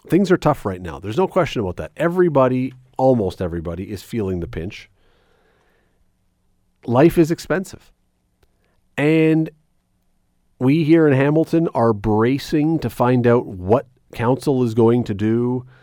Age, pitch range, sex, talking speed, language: 40-59, 100-130 Hz, male, 135 wpm, English